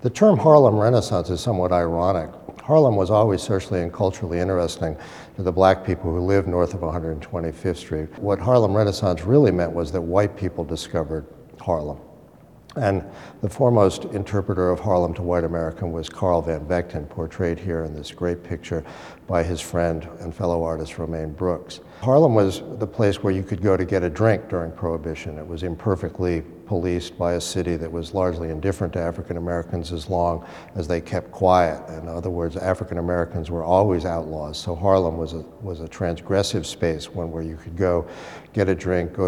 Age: 60-79